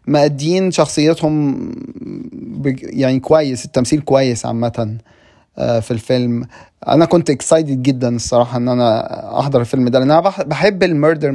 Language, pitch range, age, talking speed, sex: Arabic, 135-185 Hz, 30-49, 115 wpm, male